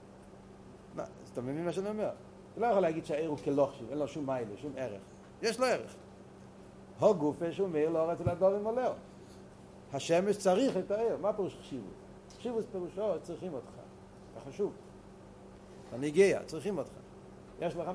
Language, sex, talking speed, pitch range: Hebrew, male, 165 wpm, 125-180 Hz